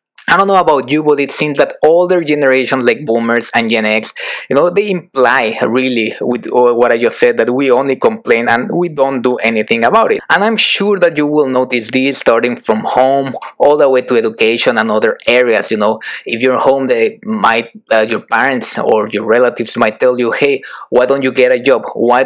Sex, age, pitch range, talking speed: male, 20-39, 125-205 Hz, 215 wpm